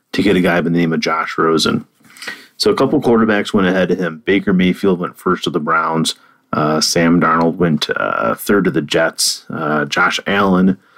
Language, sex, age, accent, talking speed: English, male, 30-49, American, 200 wpm